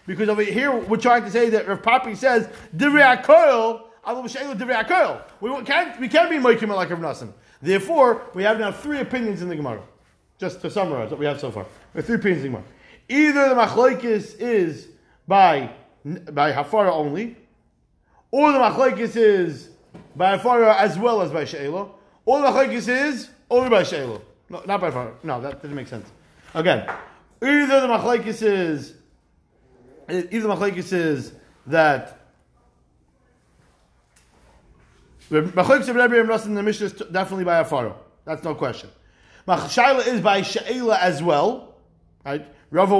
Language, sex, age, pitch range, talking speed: English, male, 30-49, 155-235 Hz, 150 wpm